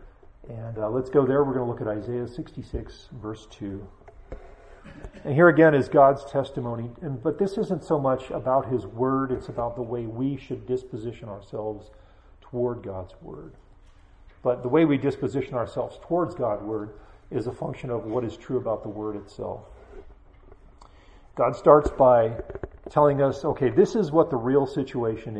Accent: American